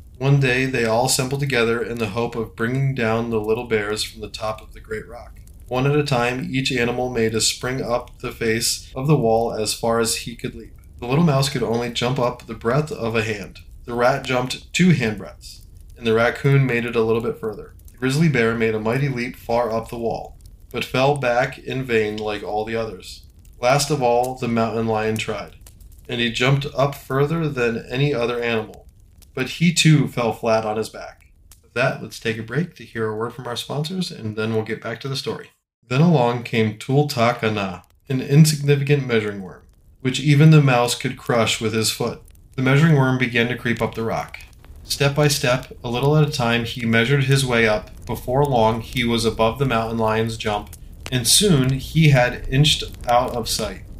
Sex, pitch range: male, 110-135 Hz